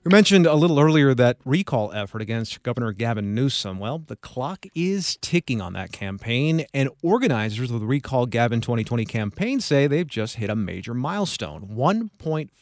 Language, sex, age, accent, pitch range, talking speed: English, male, 30-49, American, 110-155 Hz, 175 wpm